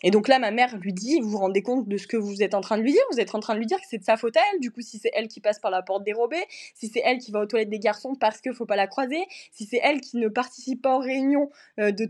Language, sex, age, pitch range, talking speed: French, female, 20-39, 210-255 Hz, 355 wpm